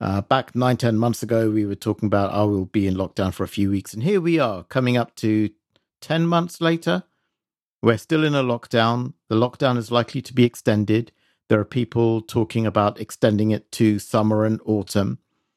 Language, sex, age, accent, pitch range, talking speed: English, male, 50-69, British, 105-130 Hz, 205 wpm